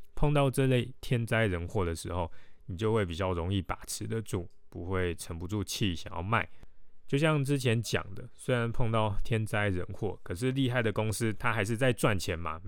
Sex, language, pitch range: male, Chinese, 90-115 Hz